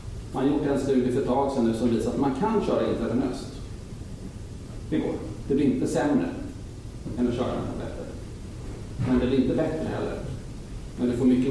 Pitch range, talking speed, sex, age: 105-125 Hz, 200 wpm, male, 40-59